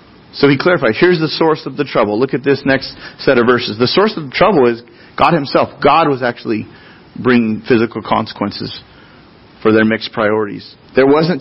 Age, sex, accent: 30-49, male, American